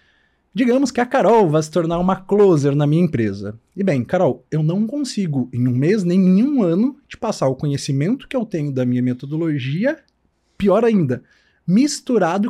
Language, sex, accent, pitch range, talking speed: Portuguese, male, Brazilian, 135-200 Hz, 180 wpm